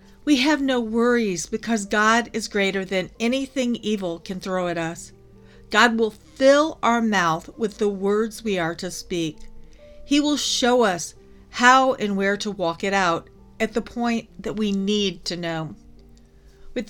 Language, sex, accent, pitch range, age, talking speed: English, female, American, 175-230 Hz, 50-69, 165 wpm